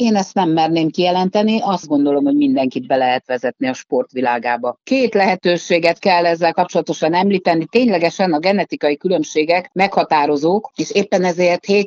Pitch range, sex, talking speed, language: 155-195 Hz, female, 140 wpm, Hungarian